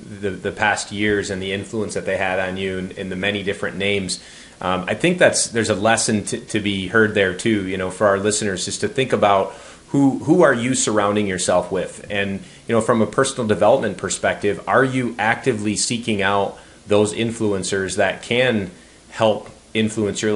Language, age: English, 30-49